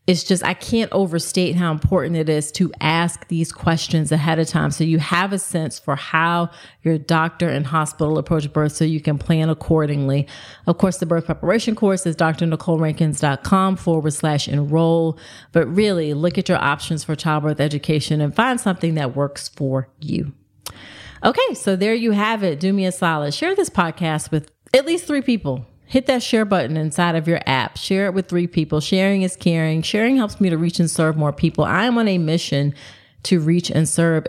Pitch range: 155-185 Hz